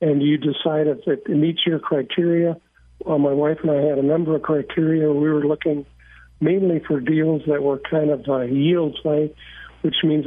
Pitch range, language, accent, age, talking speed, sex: 140-165 Hz, English, American, 50-69, 195 wpm, male